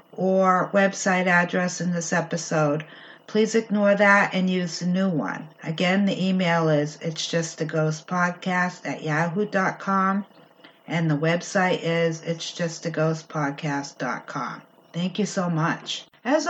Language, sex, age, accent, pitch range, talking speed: English, female, 50-69, American, 160-200 Hz, 140 wpm